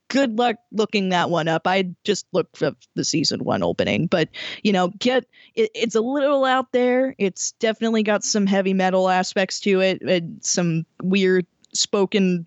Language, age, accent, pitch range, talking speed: English, 10-29, American, 185-250 Hz, 180 wpm